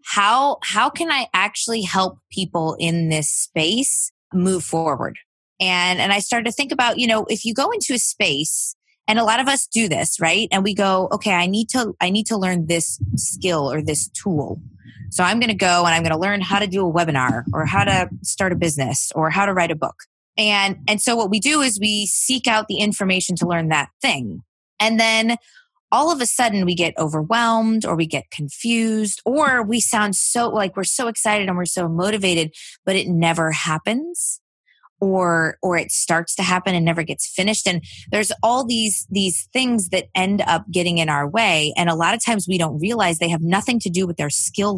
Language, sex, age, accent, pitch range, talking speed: English, female, 20-39, American, 165-220 Hz, 215 wpm